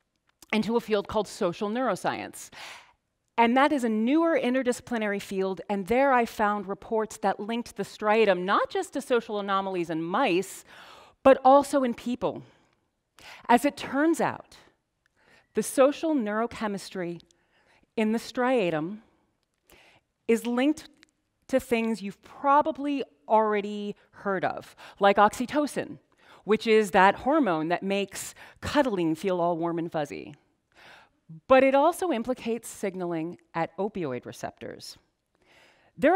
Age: 40-59